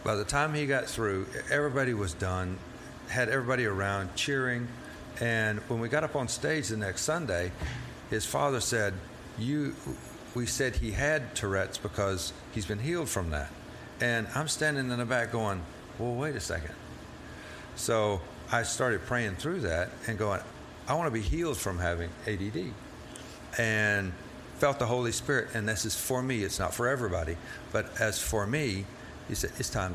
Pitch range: 90-120 Hz